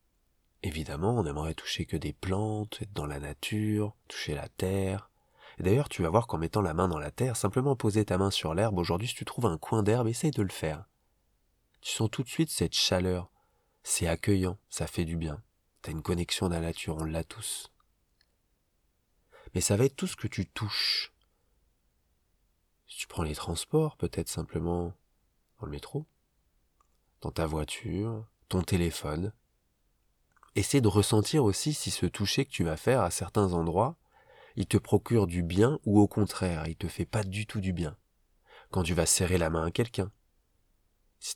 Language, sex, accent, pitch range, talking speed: French, male, French, 85-110 Hz, 185 wpm